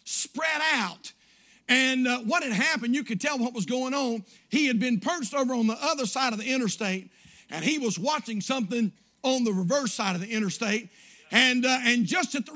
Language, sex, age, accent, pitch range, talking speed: English, male, 50-69, American, 220-270 Hz, 210 wpm